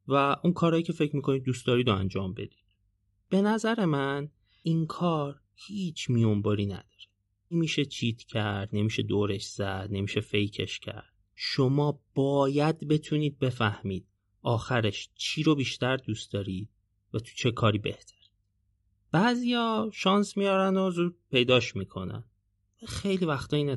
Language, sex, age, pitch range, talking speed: Persian, male, 30-49, 100-145 Hz, 135 wpm